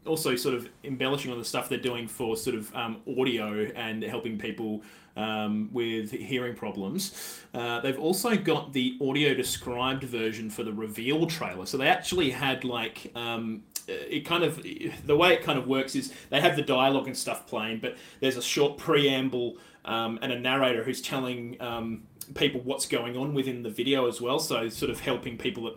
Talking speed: 195 wpm